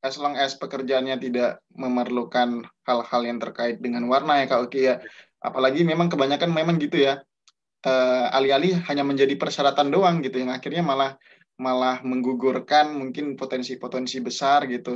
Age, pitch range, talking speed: 20-39, 130-155 Hz, 150 wpm